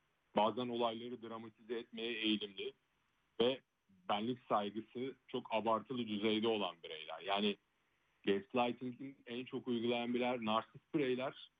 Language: Turkish